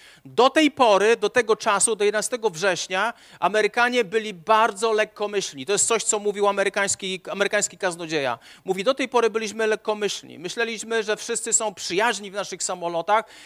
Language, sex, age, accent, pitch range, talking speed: Polish, male, 40-59, native, 190-230 Hz, 155 wpm